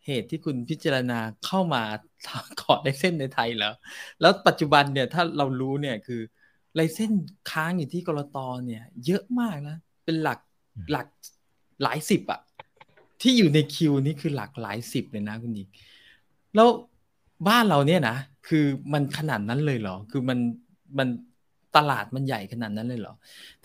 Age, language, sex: 20-39, Thai, male